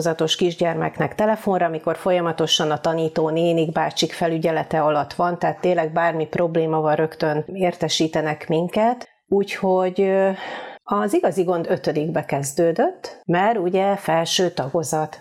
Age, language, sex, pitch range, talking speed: 30-49, Hungarian, female, 160-185 Hz, 115 wpm